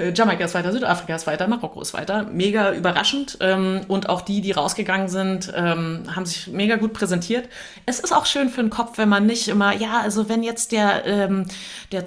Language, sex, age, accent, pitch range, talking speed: German, female, 30-49, German, 180-215 Hz, 195 wpm